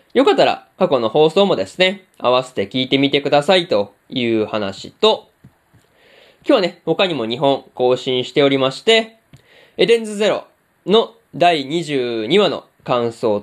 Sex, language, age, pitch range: male, Japanese, 20-39, 130-200 Hz